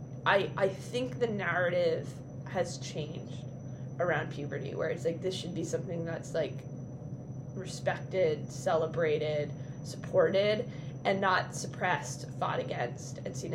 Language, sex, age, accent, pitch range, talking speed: English, female, 20-39, American, 135-195 Hz, 125 wpm